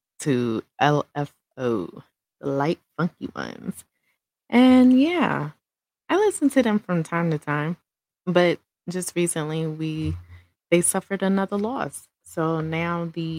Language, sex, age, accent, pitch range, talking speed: English, female, 20-39, American, 140-170 Hz, 120 wpm